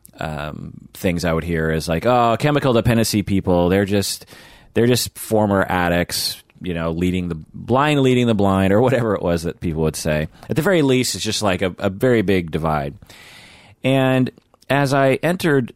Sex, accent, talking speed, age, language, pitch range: male, American, 185 wpm, 30-49, English, 85-110 Hz